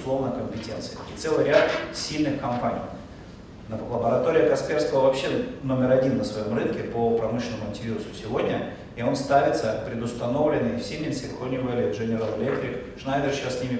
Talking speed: 140 wpm